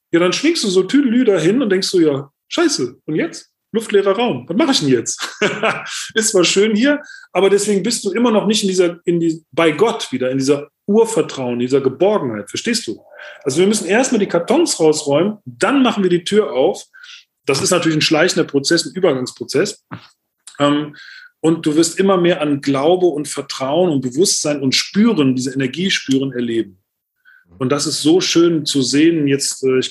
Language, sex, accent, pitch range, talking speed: German, male, German, 135-195 Hz, 185 wpm